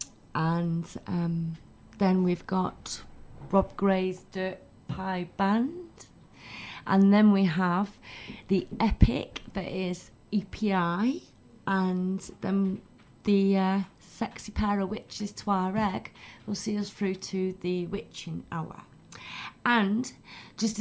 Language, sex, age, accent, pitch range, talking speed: English, female, 30-49, British, 175-205 Hz, 115 wpm